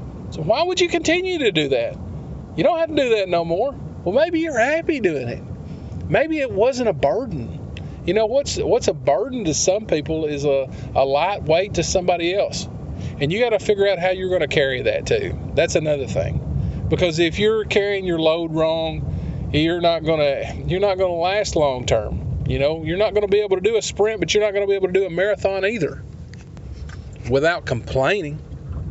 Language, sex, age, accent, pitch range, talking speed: English, male, 40-59, American, 155-225 Hz, 215 wpm